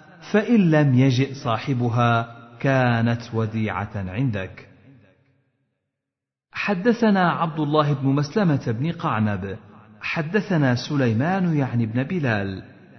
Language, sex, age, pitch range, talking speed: Arabic, male, 40-59, 115-165 Hz, 90 wpm